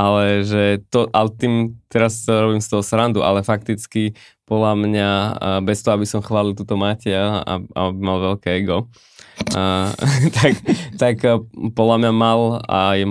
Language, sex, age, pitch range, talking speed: Slovak, male, 20-39, 95-110 Hz, 150 wpm